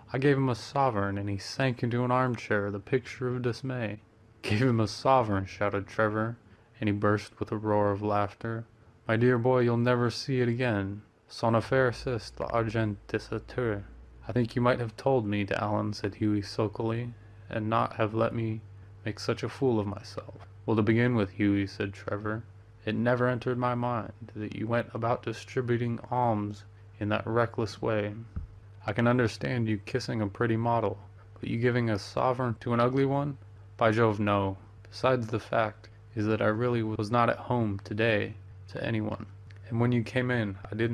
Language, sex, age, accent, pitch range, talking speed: English, male, 20-39, American, 105-120 Hz, 190 wpm